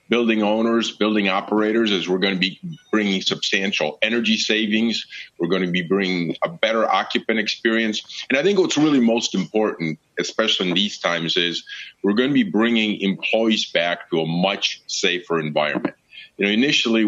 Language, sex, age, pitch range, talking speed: English, male, 40-59, 90-110 Hz, 170 wpm